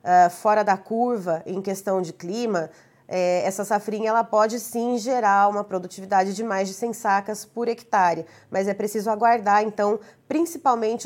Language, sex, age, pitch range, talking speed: Portuguese, female, 20-39, 190-235 Hz, 150 wpm